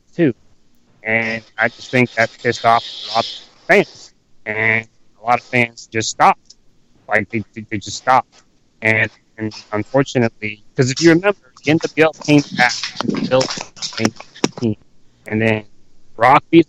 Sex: male